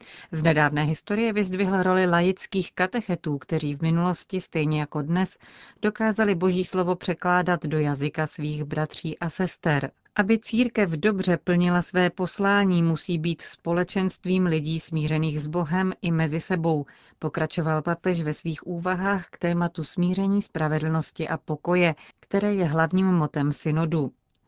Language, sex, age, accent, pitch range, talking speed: Czech, female, 40-59, native, 160-185 Hz, 135 wpm